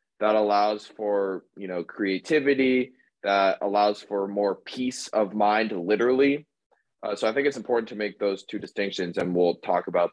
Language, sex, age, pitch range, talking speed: English, male, 20-39, 95-120 Hz, 170 wpm